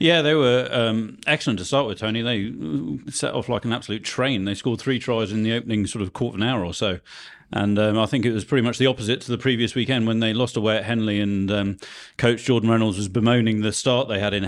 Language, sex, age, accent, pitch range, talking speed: English, male, 40-59, British, 105-125 Hz, 260 wpm